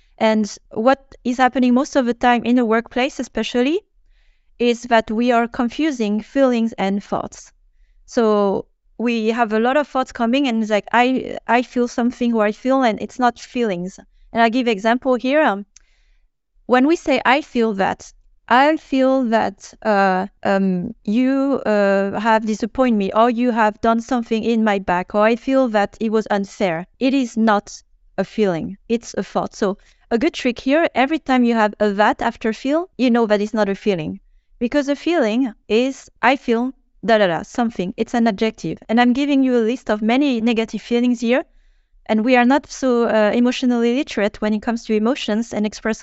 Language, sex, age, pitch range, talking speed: English, female, 30-49, 210-250 Hz, 190 wpm